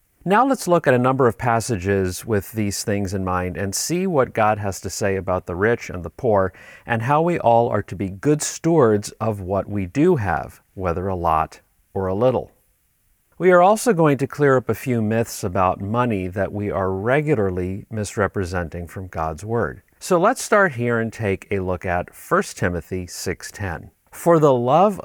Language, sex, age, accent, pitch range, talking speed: English, male, 50-69, American, 95-125 Hz, 195 wpm